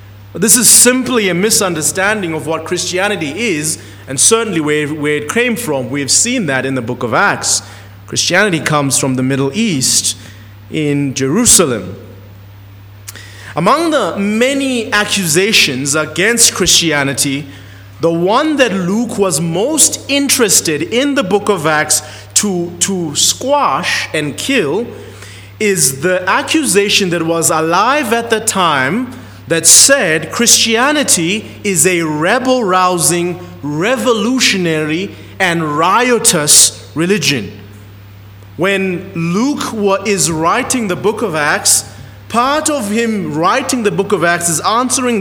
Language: English